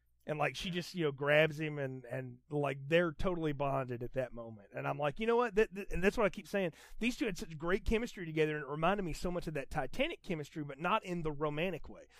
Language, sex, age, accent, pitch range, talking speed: English, male, 30-49, American, 130-180 Hz, 265 wpm